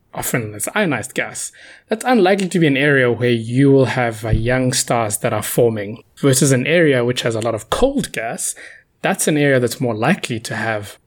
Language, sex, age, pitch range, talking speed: English, male, 20-39, 120-150 Hz, 200 wpm